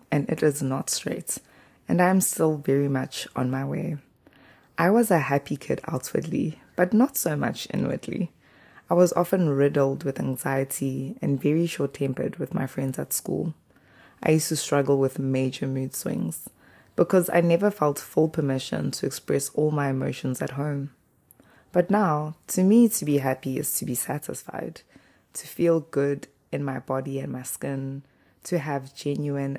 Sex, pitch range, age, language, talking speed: female, 130-160 Hz, 20-39, English, 170 wpm